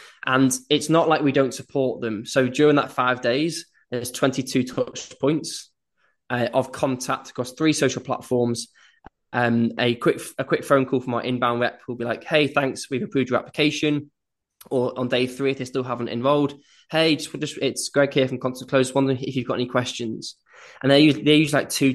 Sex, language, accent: male, English, British